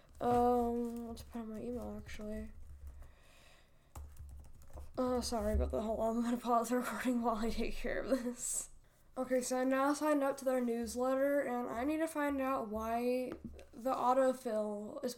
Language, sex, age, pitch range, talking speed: English, female, 10-29, 225-260 Hz, 175 wpm